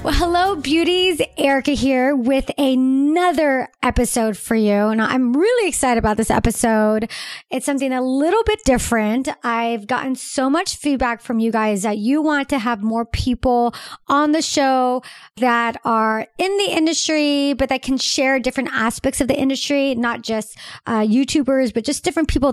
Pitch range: 220-280 Hz